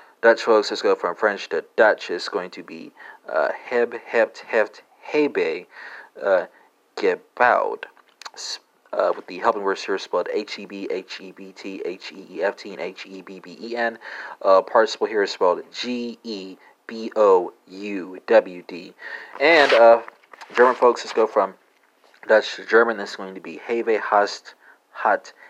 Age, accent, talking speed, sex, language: 40-59, American, 170 wpm, male, English